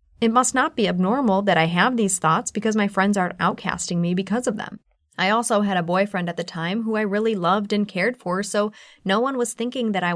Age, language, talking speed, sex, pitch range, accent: 20-39, English, 240 wpm, female, 175-215 Hz, American